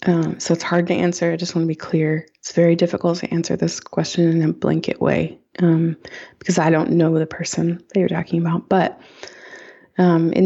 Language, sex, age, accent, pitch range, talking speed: English, female, 20-39, American, 170-195 Hz, 210 wpm